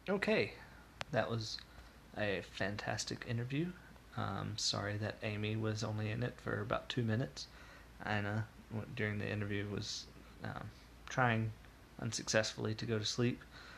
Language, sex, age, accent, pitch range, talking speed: English, male, 20-39, American, 105-115 Hz, 130 wpm